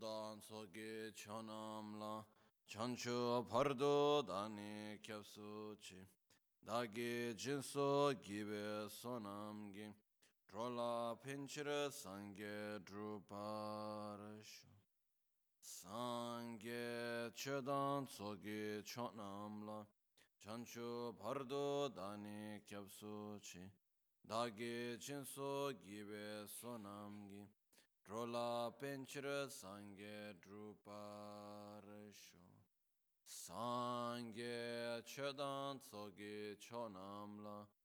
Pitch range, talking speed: 105-120 Hz, 55 wpm